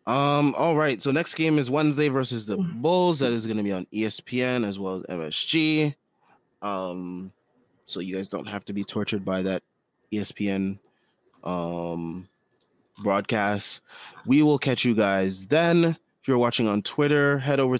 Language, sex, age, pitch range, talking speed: English, male, 20-39, 100-135 Hz, 165 wpm